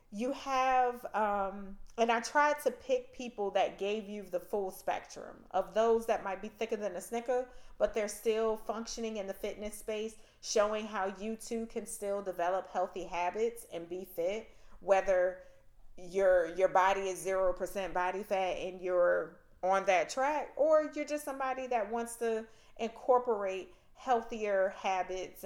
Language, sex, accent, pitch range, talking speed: English, female, American, 185-235 Hz, 160 wpm